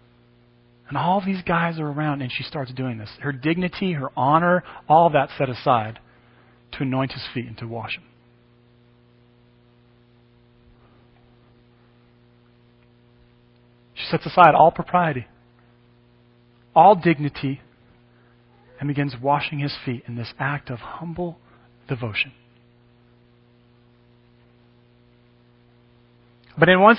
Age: 40-59